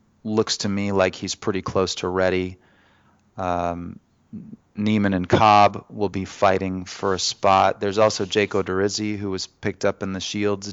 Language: English